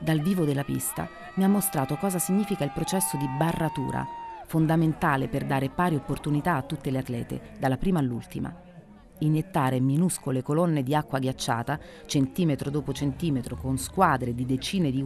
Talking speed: 155 wpm